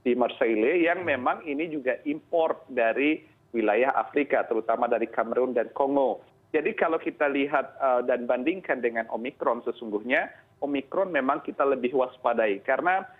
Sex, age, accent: male, 40-59, native